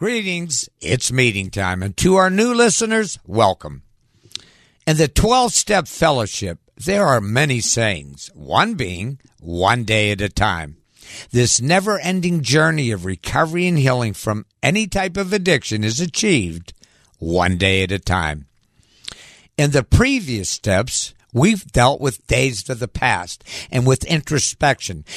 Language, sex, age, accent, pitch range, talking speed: English, male, 60-79, American, 100-160 Hz, 140 wpm